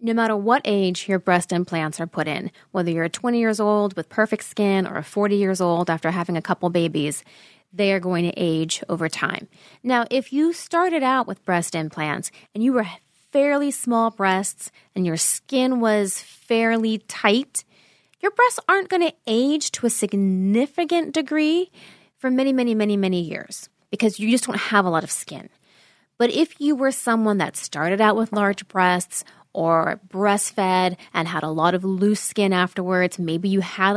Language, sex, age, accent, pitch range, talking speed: English, female, 30-49, American, 180-230 Hz, 185 wpm